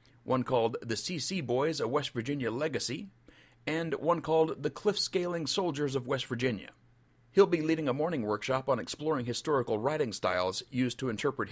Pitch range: 120-165 Hz